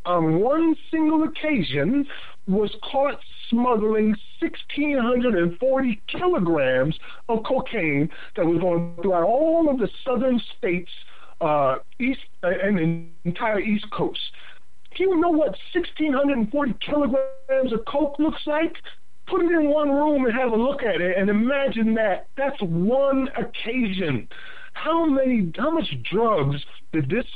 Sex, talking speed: male, 150 wpm